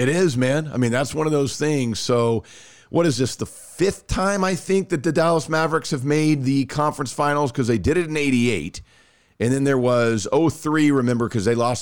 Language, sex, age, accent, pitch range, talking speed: English, male, 40-59, American, 105-145 Hz, 220 wpm